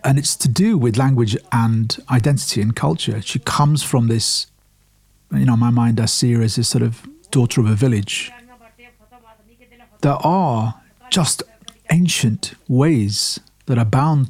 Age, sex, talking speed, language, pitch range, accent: 50-69, male, 160 wpm, English, 115-150 Hz, British